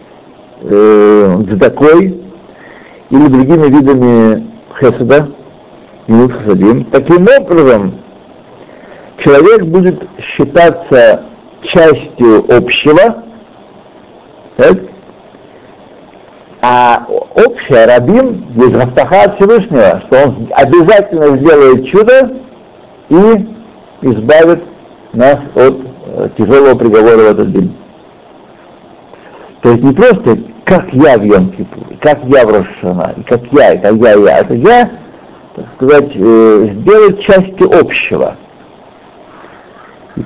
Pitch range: 130-220 Hz